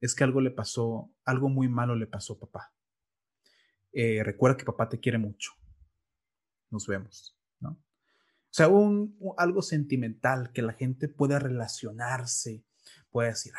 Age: 30-49